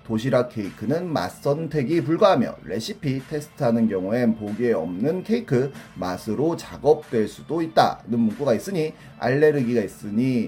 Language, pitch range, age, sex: Korean, 115-160 Hz, 30-49, male